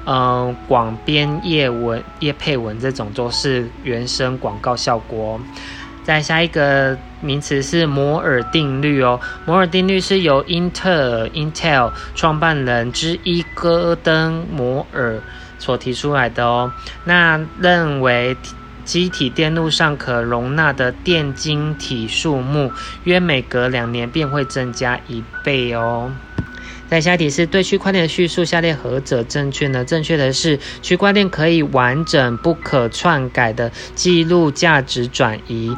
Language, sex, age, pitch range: Chinese, male, 20-39, 125-165 Hz